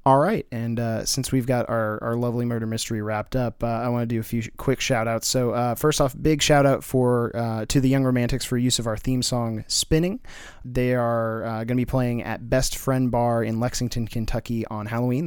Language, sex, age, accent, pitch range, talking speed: English, male, 30-49, American, 110-130 Hz, 230 wpm